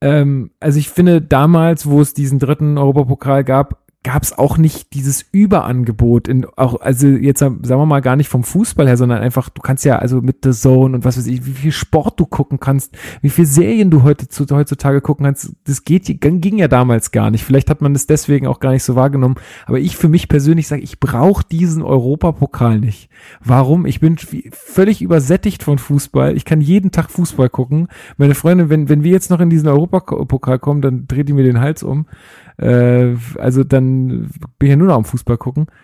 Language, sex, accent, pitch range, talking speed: German, male, German, 125-150 Hz, 210 wpm